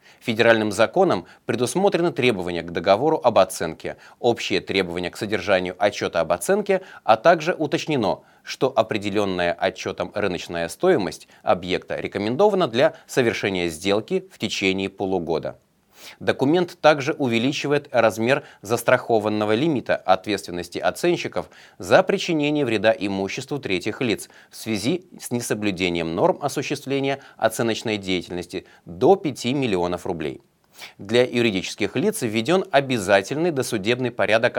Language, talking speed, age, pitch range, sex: Russian, 110 wpm, 30-49, 95-140 Hz, male